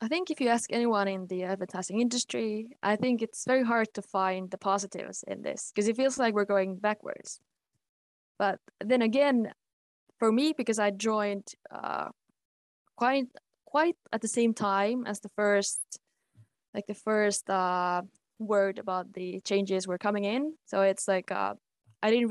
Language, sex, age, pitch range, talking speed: English, female, 20-39, 190-230 Hz, 170 wpm